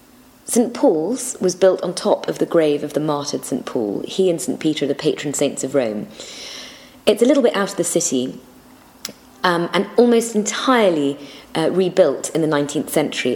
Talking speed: 190 wpm